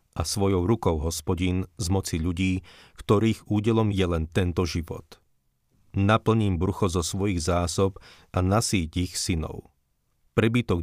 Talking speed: 125 wpm